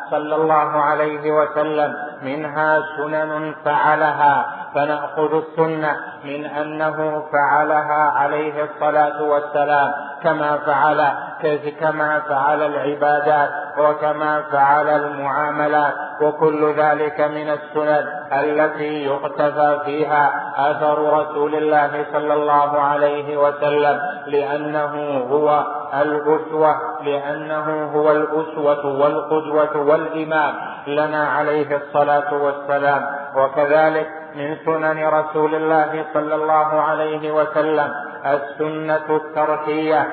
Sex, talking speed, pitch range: male, 90 wpm, 145-155 Hz